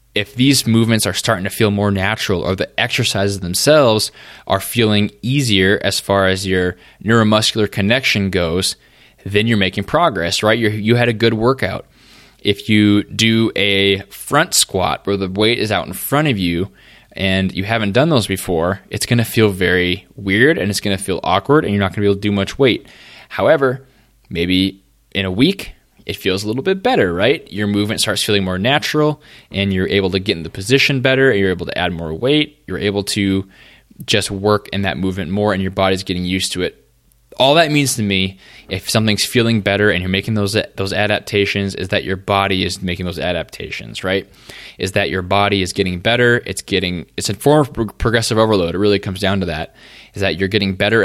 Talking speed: 210 wpm